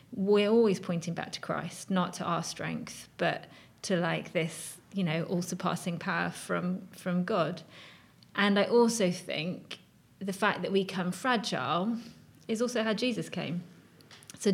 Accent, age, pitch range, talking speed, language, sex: British, 30-49, 175-200 Hz, 155 wpm, English, female